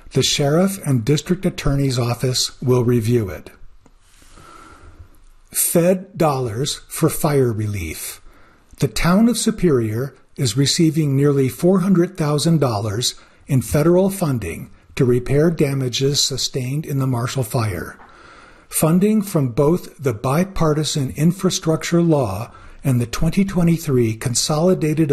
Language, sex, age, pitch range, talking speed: English, male, 50-69, 125-165 Hz, 105 wpm